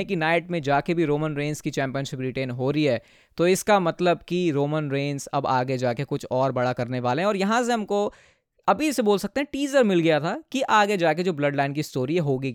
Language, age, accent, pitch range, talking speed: Hindi, 20-39, native, 145-185 Hz, 220 wpm